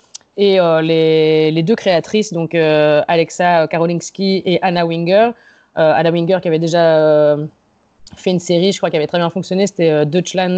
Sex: female